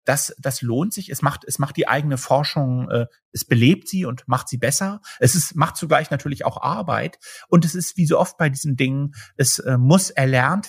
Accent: German